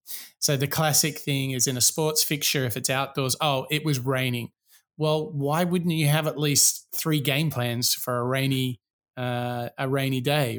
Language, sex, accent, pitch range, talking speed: English, male, Australian, 125-155 Hz, 185 wpm